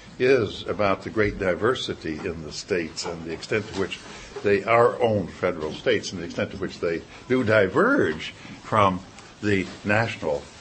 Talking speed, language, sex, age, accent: 165 wpm, English, male, 60-79, American